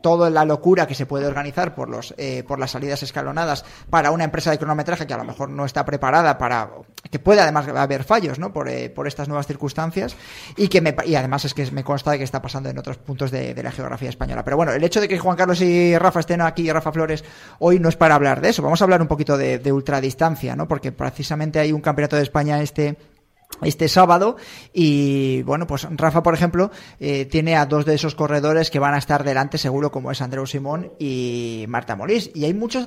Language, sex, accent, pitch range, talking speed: Spanish, male, Spanish, 140-175 Hz, 235 wpm